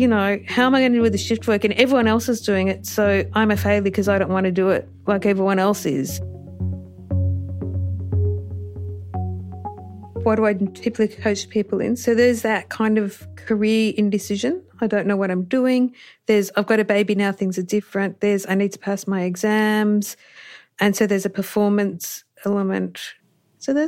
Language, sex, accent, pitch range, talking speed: English, female, Australian, 190-225 Hz, 190 wpm